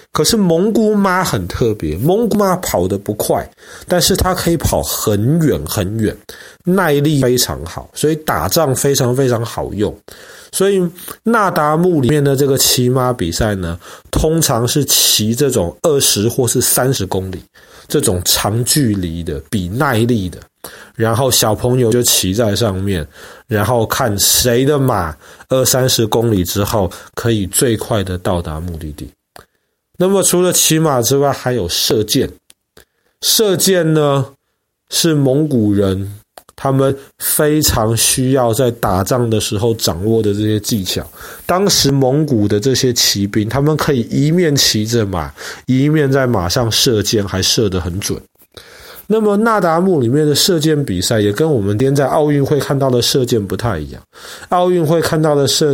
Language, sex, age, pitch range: Chinese, male, 30-49, 105-150 Hz